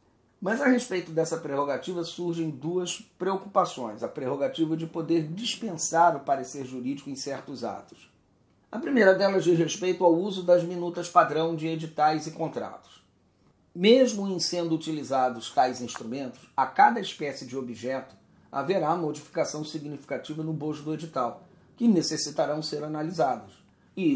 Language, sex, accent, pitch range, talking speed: Portuguese, male, Brazilian, 150-185 Hz, 140 wpm